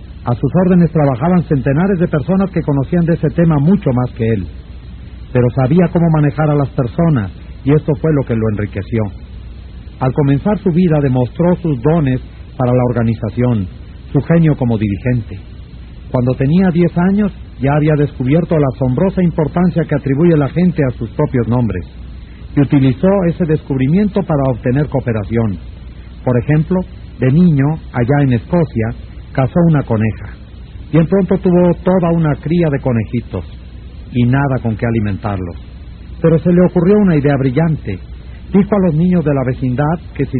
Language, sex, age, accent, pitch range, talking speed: Spanish, male, 50-69, Mexican, 115-165 Hz, 160 wpm